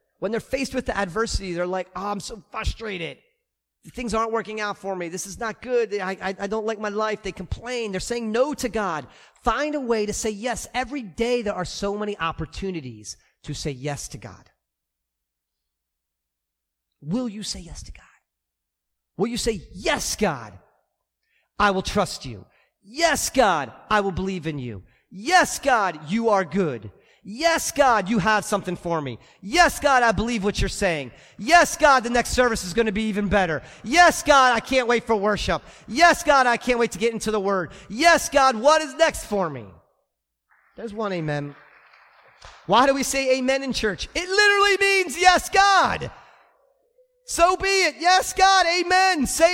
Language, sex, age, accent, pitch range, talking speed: English, male, 40-59, American, 185-280 Hz, 185 wpm